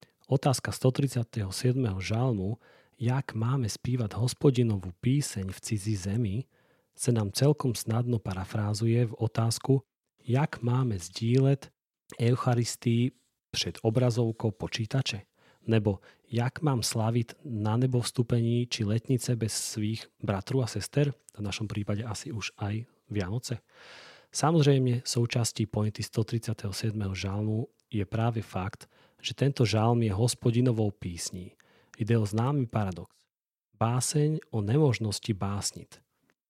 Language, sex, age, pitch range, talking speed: Slovak, male, 40-59, 105-125 Hz, 115 wpm